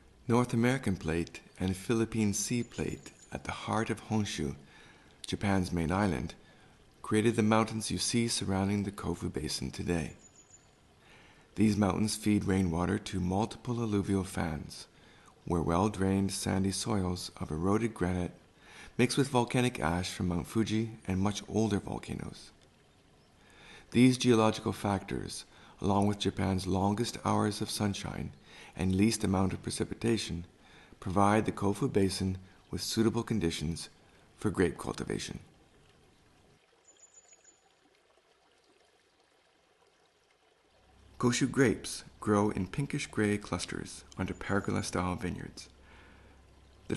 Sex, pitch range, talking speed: male, 90-110 Hz, 110 wpm